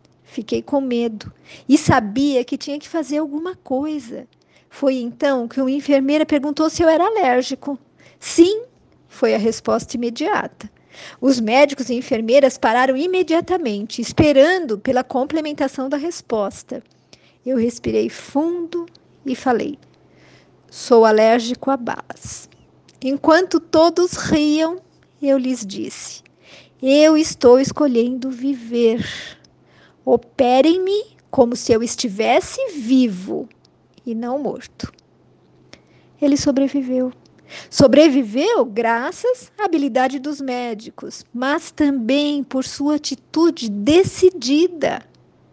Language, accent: Portuguese, Brazilian